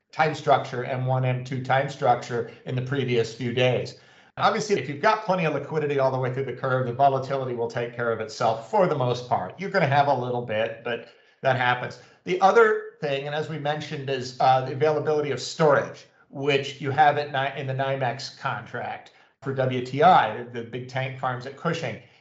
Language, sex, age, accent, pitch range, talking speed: English, male, 50-69, American, 125-150 Hz, 205 wpm